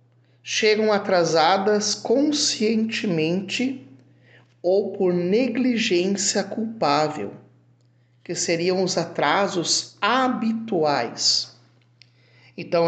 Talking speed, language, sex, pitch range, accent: 60 wpm, Portuguese, male, 120-195 Hz, Brazilian